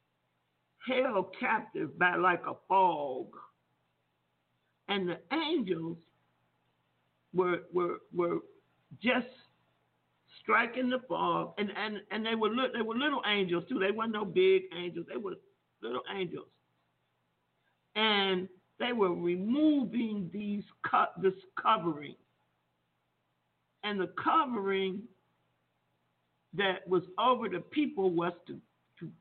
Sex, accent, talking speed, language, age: male, American, 110 wpm, English, 50-69